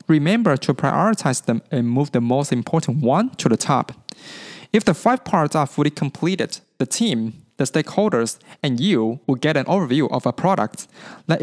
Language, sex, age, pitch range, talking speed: English, male, 20-39, 130-190 Hz, 180 wpm